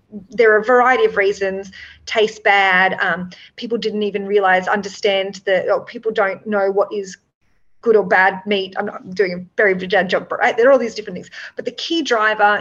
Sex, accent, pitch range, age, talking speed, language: female, Australian, 190-235 Hz, 30-49, 200 wpm, English